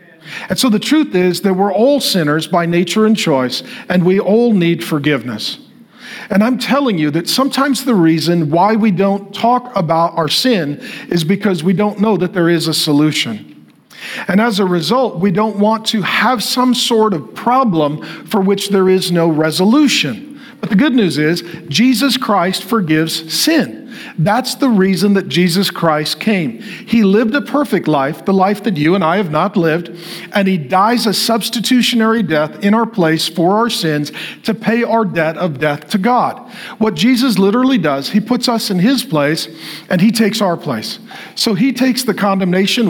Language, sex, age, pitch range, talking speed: English, male, 50-69, 170-225 Hz, 185 wpm